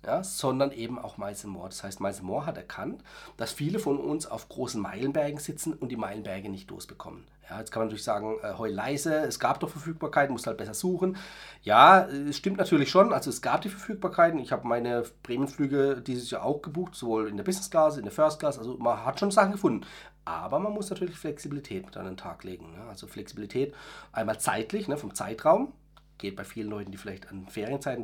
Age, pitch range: 40-59, 110-150 Hz